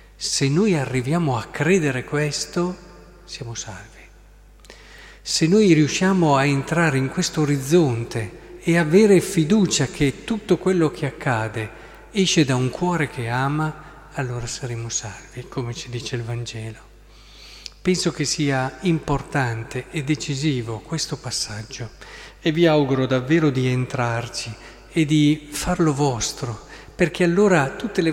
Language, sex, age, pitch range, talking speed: Italian, male, 50-69, 130-170 Hz, 130 wpm